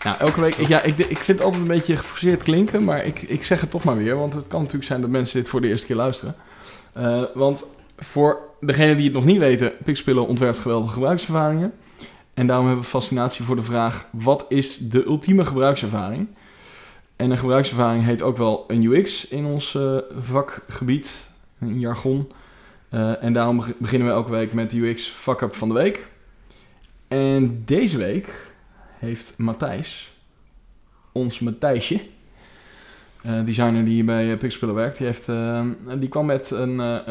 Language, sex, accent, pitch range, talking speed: Dutch, male, Dutch, 115-145 Hz, 175 wpm